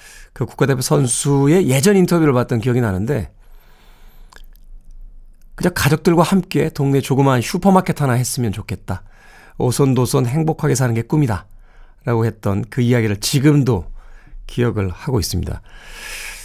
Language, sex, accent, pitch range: Korean, male, native, 115-175 Hz